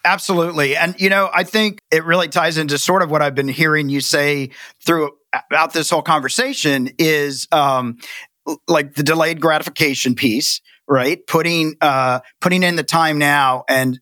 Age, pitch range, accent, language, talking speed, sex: 40-59, 140-170 Hz, American, English, 165 wpm, male